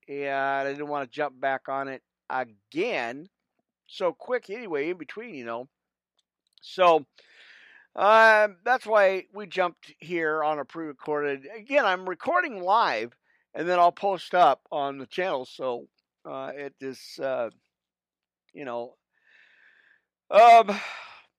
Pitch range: 130-185 Hz